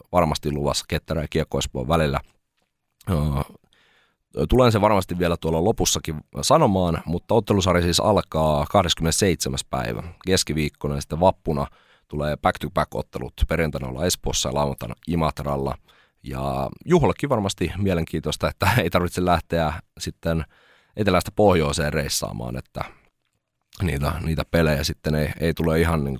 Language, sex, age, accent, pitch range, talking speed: Finnish, male, 30-49, native, 75-95 Hz, 115 wpm